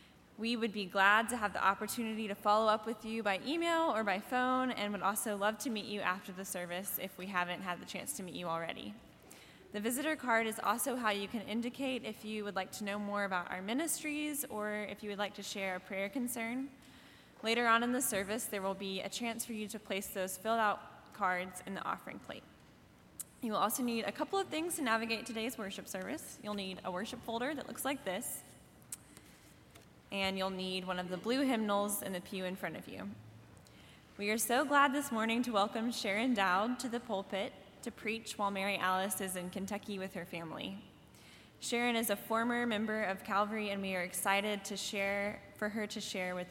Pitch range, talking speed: 190-235 Hz, 215 wpm